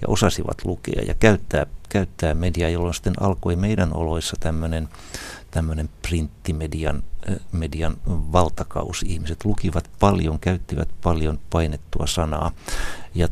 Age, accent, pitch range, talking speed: 60-79, native, 80-95 Hz, 110 wpm